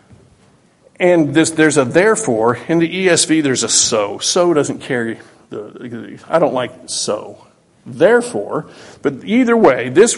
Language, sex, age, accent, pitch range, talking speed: English, male, 50-69, American, 145-190 Hz, 135 wpm